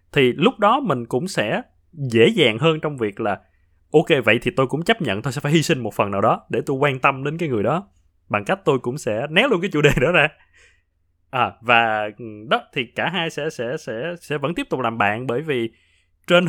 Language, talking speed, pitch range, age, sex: Vietnamese, 235 wpm, 100-150 Hz, 20-39, male